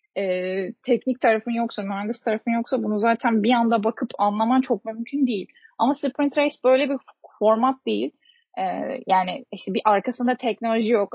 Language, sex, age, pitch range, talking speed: Turkish, female, 10-29, 210-250 Hz, 160 wpm